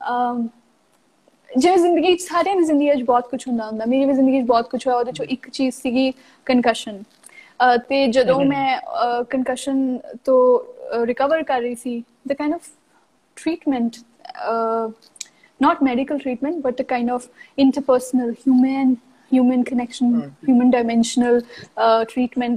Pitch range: 240-285 Hz